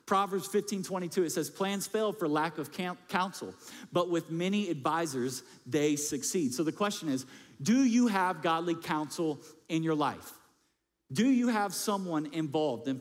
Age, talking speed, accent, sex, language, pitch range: 50-69, 155 wpm, American, male, English, 150-190 Hz